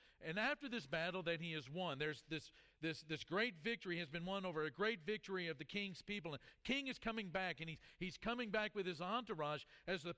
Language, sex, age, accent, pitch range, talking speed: English, male, 50-69, American, 155-210 Hz, 235 wpm